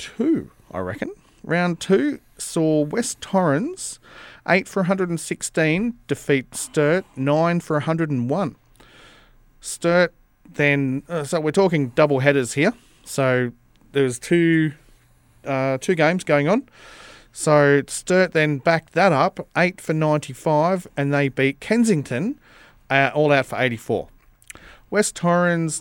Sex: male